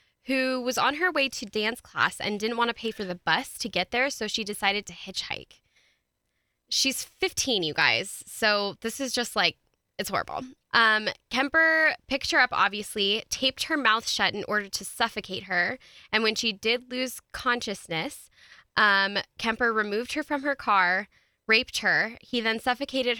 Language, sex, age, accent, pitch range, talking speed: English, female, 10-29, American, 195-255 Hz, 175 wpm